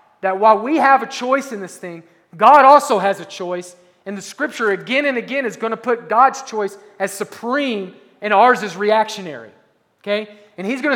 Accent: American